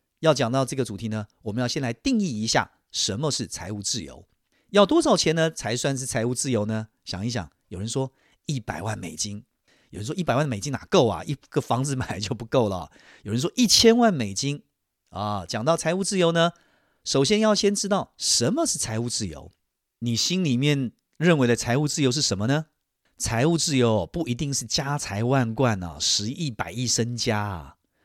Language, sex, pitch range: English, male, 110-160 Hz